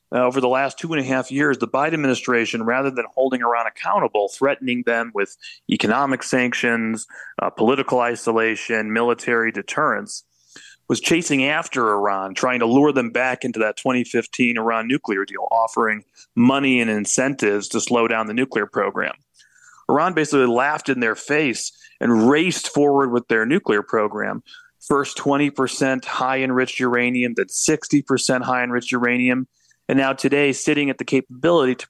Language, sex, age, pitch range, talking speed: English, male, 30-49, 115-135 Hz, 160 wpm